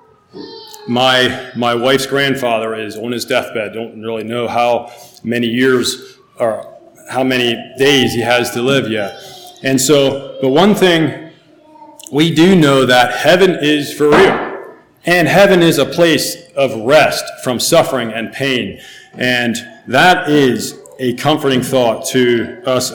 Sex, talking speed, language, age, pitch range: male, 145 wpm, English, 40-59, 125-165 Hz